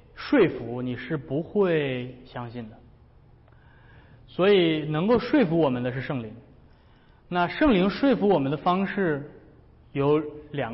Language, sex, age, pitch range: Chinese, male, 20-39, 125-165 Hz